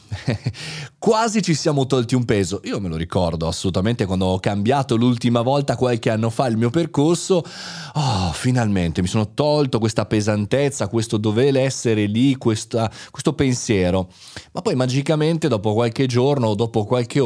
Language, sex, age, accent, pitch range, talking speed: Italian, male, 30-49, native, 105-145 Hz, 150 wpm